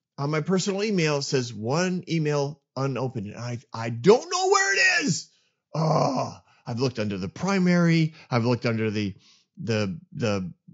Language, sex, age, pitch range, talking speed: English, male, 30-49, 120-175 Hz, 160 wpm